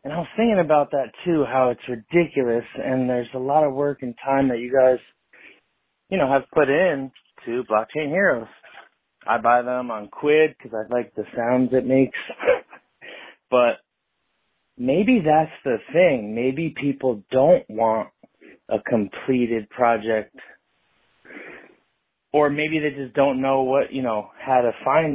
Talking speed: 155 wpm